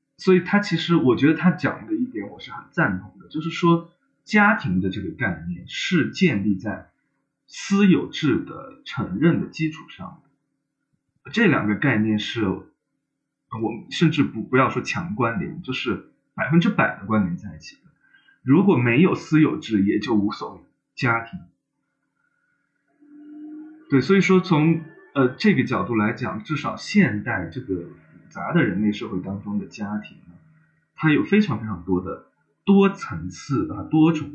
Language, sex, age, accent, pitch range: Chinese, male, 20-39, native, 115-180 Hz